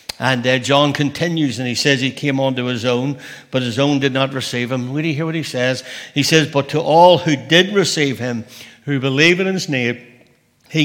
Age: 60-79